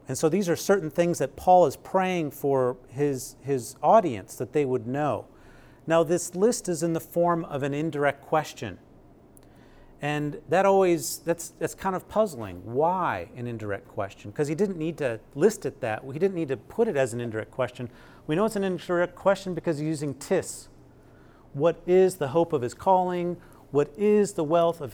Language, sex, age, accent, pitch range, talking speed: English, male, 40-59, American, 130-170 Hz, 195 wpm